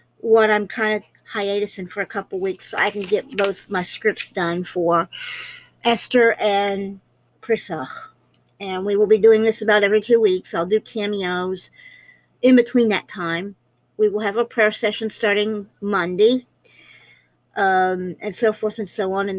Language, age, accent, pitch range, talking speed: English, 50-69, American, 185-215 Hz, 170 wpm